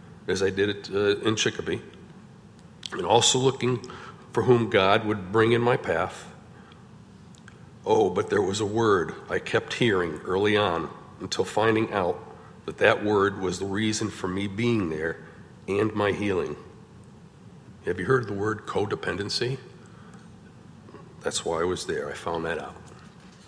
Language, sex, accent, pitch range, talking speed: English, male, American, 100-125 Hz, 155 wpm